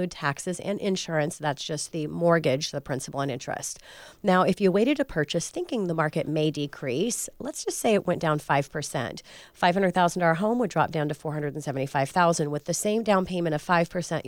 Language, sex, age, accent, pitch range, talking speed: English, female, 40-59, American, 150-180 Hz, 180 wpm